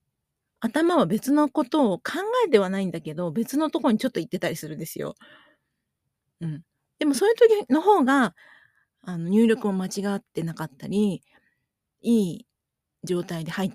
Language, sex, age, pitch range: Japanese, female, 40-59, 165-230 Hz